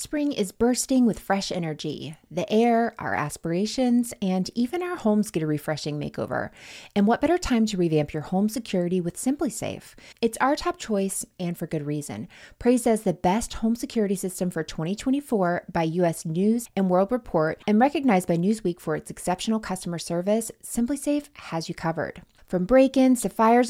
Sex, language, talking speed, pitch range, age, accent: female, English, 175 wpm, 165-230 Hz, 30-49, American